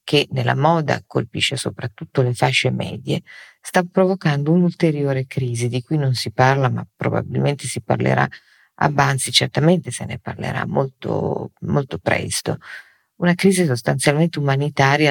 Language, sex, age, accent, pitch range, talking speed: Italian, female, 50-69, native, 125-155 Hz, 130 wpm